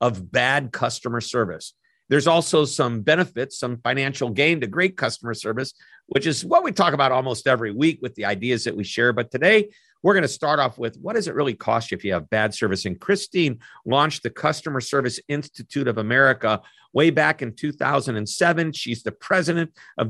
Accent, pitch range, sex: American, 120-155 Hz, male